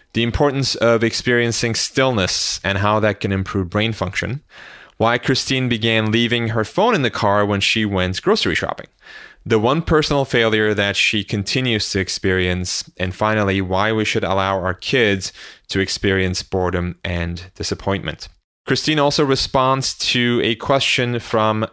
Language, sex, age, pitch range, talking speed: English, male, 30-49, 95-115 Hz, 150 wpm